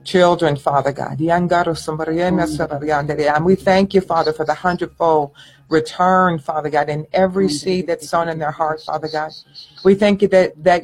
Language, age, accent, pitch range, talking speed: English, 60-79, American, 155-190 Hz, 160 wpm